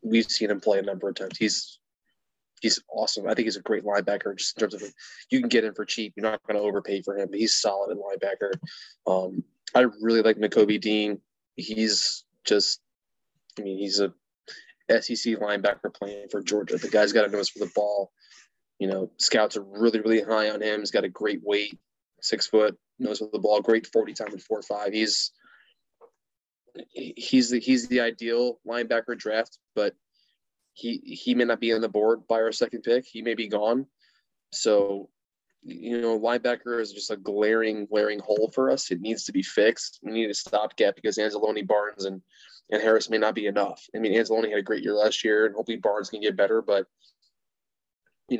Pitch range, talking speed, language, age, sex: 105-120 Hz, 200 wpm, English, 20-39, male